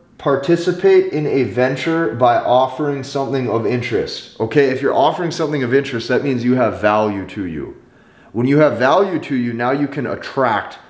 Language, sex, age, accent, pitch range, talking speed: English, male, 30-49, American, 110-145 Hz, 180 wpm